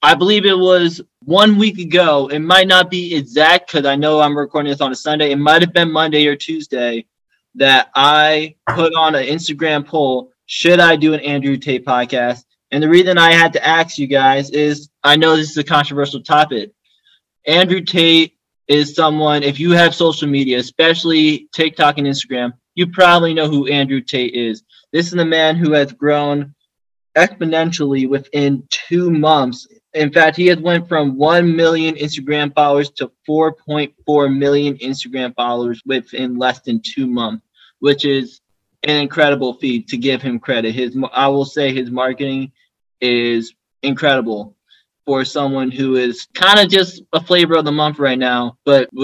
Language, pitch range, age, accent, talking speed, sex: English, 135-165 Hz, 20-39, American, 175 wpm, male